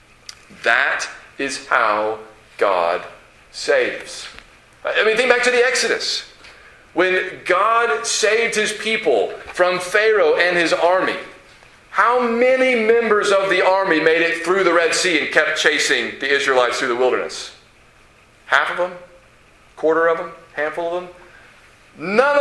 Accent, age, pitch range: American, 40-59, 165-230 Hz